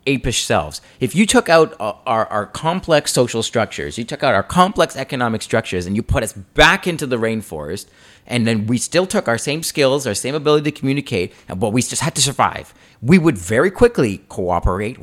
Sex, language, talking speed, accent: male, English, 210 wpm, American